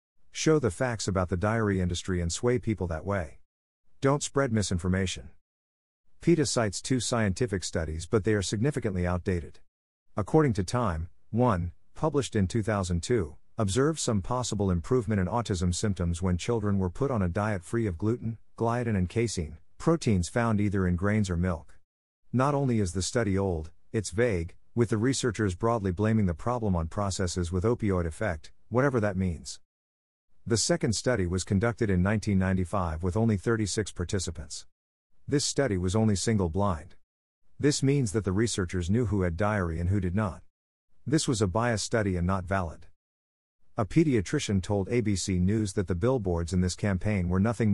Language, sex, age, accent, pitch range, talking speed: English, male, 50-69, American, 90-115 Hz, 165 wpm